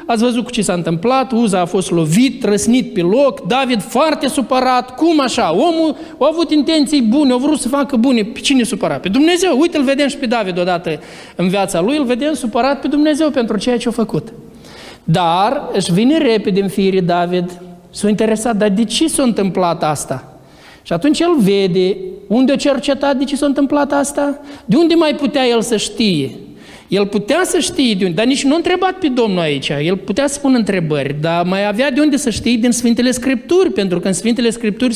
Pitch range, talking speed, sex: 175-275 Hz, 210 wpm, male